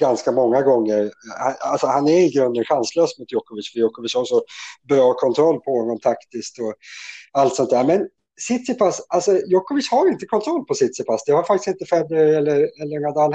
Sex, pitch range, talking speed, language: male, 130-180 Hz, 180 wpm, Swedish